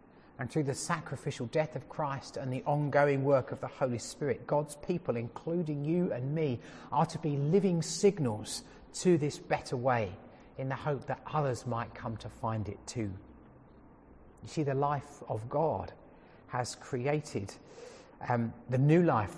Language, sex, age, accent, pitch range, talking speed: English, male, 40-59, British, 115-145 Hz, 165 wpm